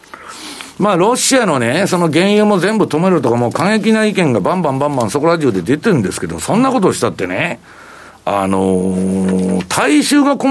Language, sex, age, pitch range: Japanese, male, 60-79, 120-205 Hz